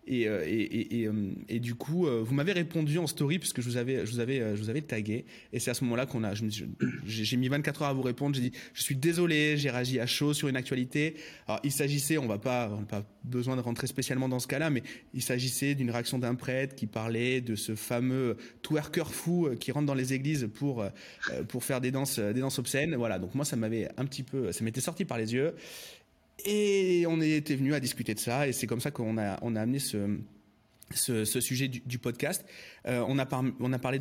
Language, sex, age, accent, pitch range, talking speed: French, male, 20-39, French, 115-145 Hz, 250 wpm